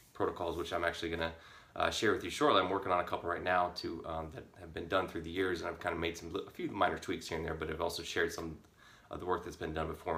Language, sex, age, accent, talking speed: English, male, 30-49, American, 305 wpm